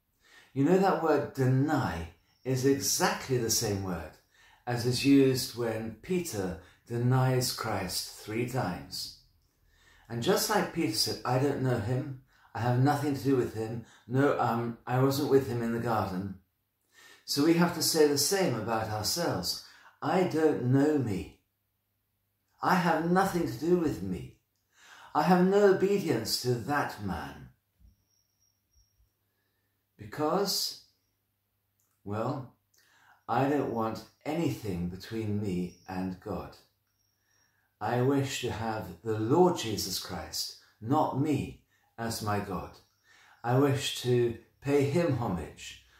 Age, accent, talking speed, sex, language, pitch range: 50-69, British, 130 wpm, male, English, 100-145 Hz